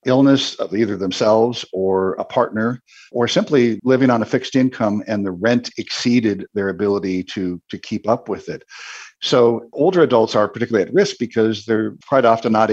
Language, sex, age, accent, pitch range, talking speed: English, male, 50-69, American, 95-120 Hz, 180 wpm